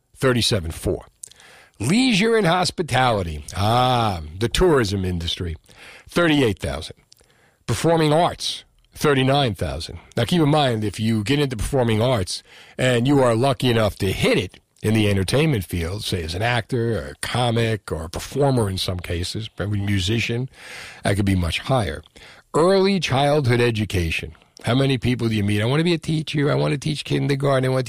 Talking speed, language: 160 wpm, English